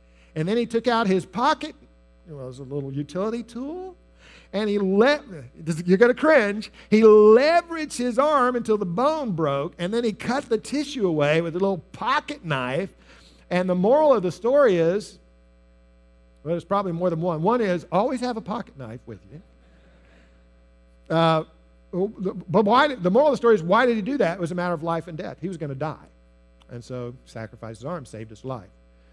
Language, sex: English, male